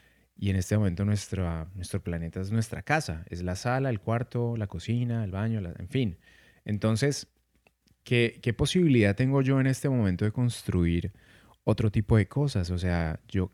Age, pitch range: 30-49, 95-115 Hz